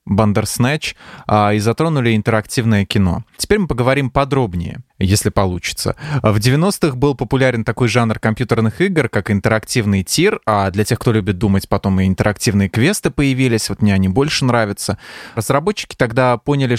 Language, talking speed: Russian, 145 wpm